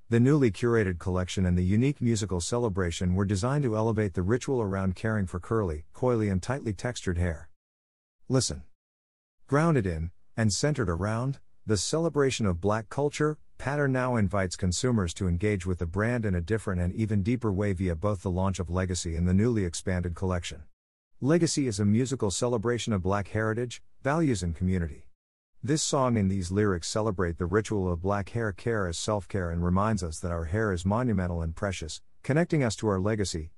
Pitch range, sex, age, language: 90-115 Hz, male, 50-69, English